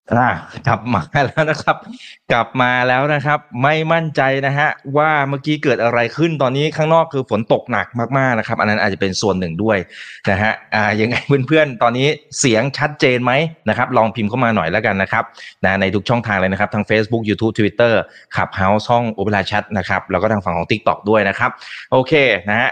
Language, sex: Thai, male